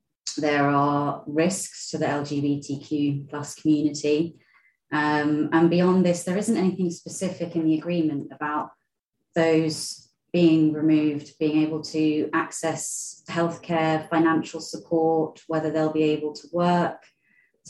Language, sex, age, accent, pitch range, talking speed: English, female, 30-49, British, 150-165 Hz, 125 wpm